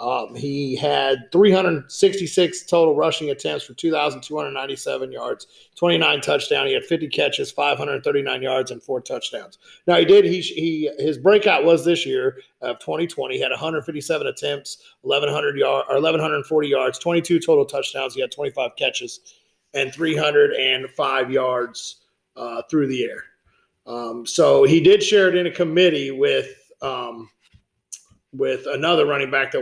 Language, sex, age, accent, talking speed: English, male, 40-59, American, 150 wpm